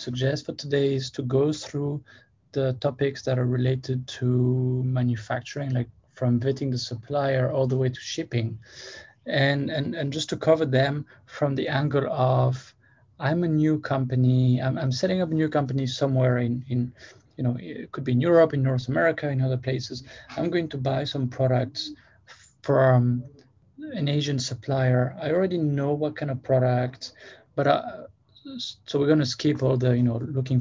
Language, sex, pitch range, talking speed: English, male, 125-145 Hz, 180 wpm